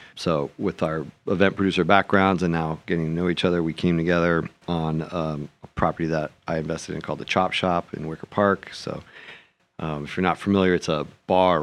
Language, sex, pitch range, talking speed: English, male, 85-95 Hz, 205 wpm